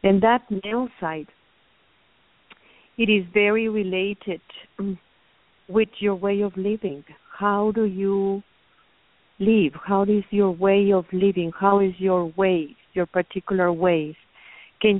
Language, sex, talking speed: English, female, 125 wpm